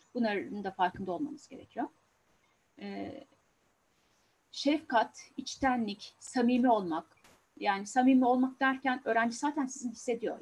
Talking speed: 105 wpm